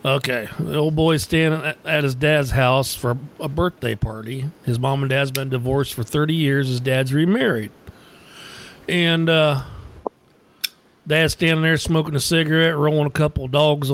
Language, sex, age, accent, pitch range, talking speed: English, male, 50-69, American, 130-160 Hz, 160 wpm